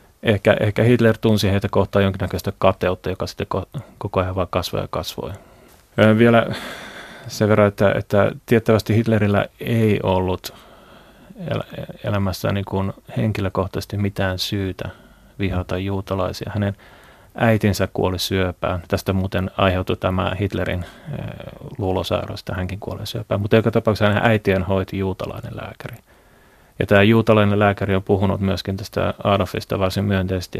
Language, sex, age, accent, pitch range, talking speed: Finnish, male, 30-49, native, 95-105 Hz, 135 wpm